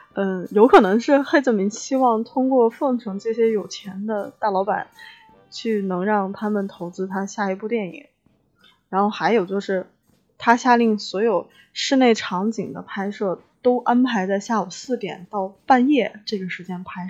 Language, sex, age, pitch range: Chinese, female, 20-39, 195-250 Hz